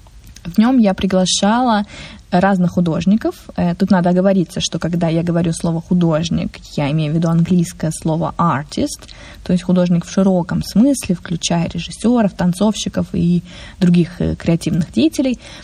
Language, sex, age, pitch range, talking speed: Russian, female, 20-39, 175-210 Hz, 135 wpm